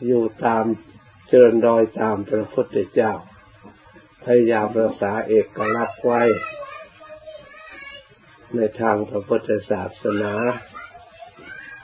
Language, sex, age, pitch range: Thai, male, 60-79, 105-125 Hz